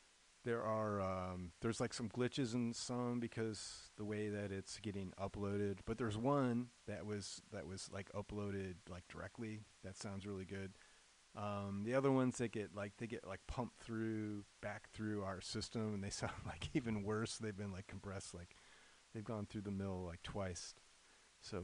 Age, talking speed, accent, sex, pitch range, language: 30-49, 185 wpm, American, male, 95-110 Hz, English